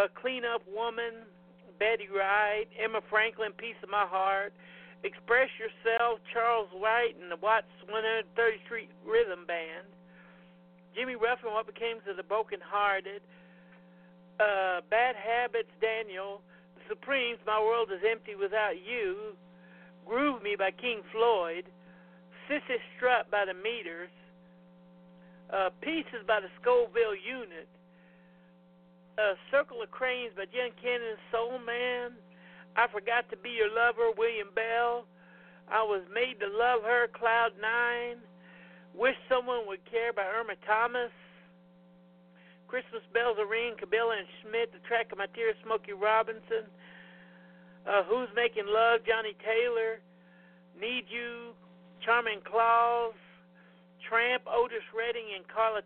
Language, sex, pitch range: English, male, 180-235 Hz